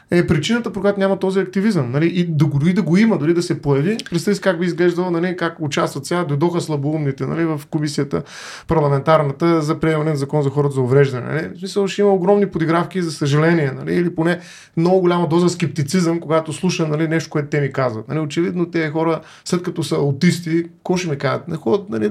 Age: 20-39